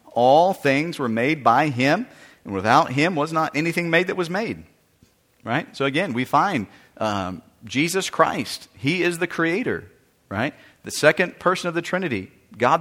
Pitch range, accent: 130-170 Hz, American